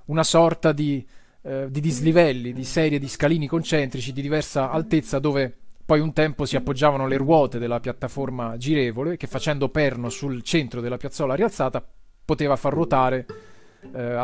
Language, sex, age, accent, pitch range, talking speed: Italian, male, 30-49, native, 130-155 Hz, 155 wpm